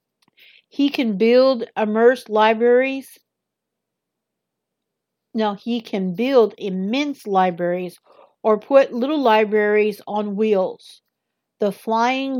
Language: English